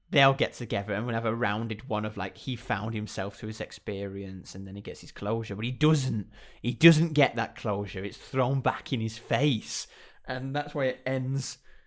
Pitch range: 110-145 Hz